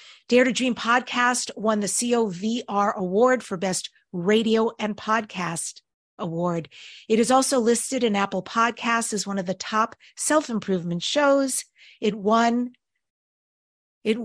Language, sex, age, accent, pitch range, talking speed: English, female, 50-69, American, 190-245 Hz, 130 wpm